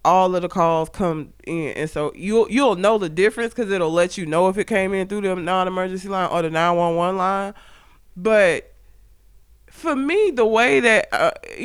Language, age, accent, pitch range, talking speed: English, 20-39, American, 180-255 Hz, 190 wpm